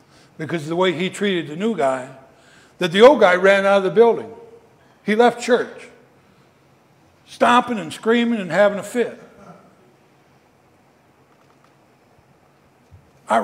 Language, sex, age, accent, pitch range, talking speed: English, male, 60-79, American, 160-215 Hz, 130 wpm